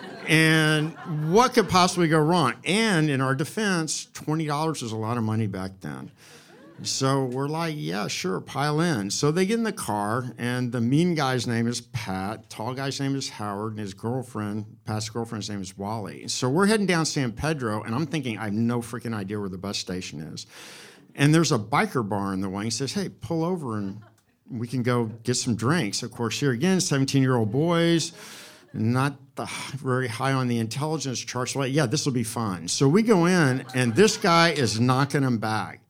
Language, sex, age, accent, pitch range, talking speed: English, male, 50-69, American, 110-150 Hz, 205 wpm